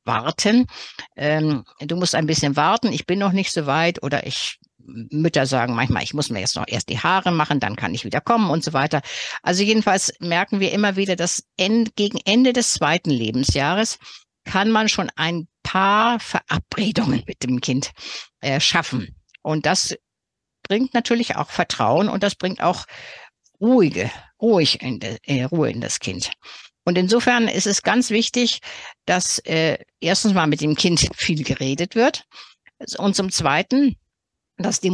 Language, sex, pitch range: German, female, 150-210 Hz